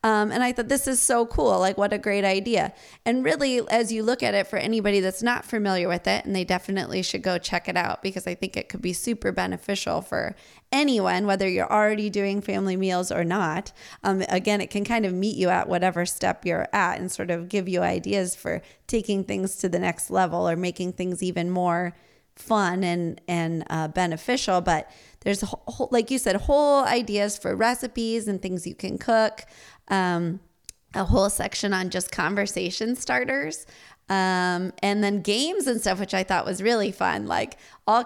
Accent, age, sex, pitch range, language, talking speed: American, 20-39, female, 180-215 Hz, English, 200 wpm